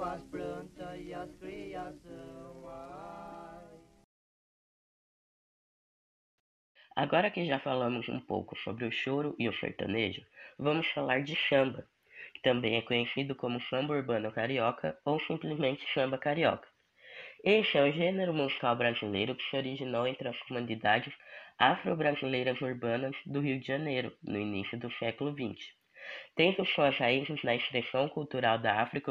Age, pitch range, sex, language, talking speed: 20-39, 120-145 Hz, female, Portuguese, 120 wpm